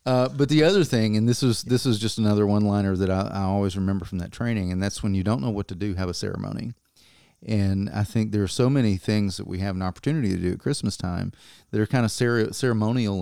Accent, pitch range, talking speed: American, 95-110 Hz, 260 wpm